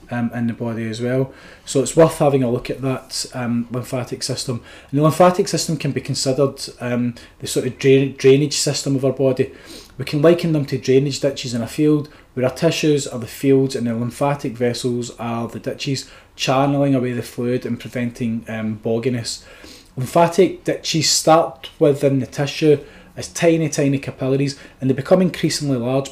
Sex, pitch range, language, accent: male, 125-145 Hz, English, British